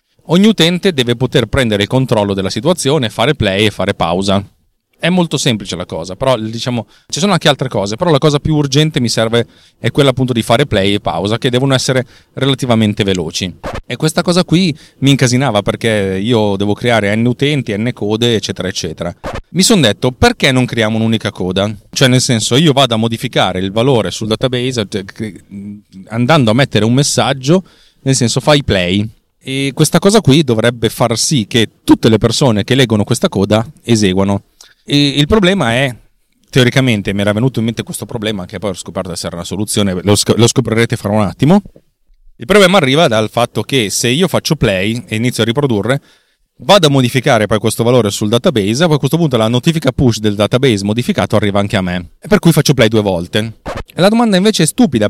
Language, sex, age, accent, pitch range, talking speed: Italian, male, 30-49, native, 105-140 Hz, 195 wpm